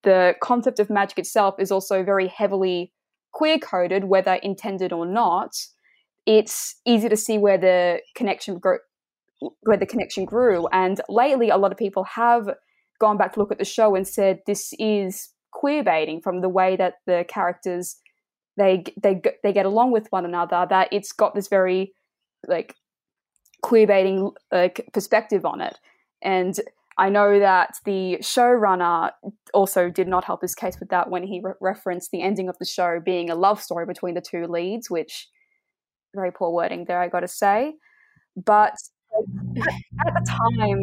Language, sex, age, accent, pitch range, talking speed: English, female, 10-29, Australian, 180-215 Hz, 170 wpm